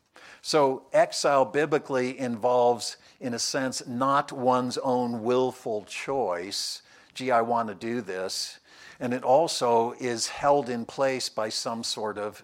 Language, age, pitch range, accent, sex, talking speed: English, 60-79, 115-130 Hz, American, male, 140 wpm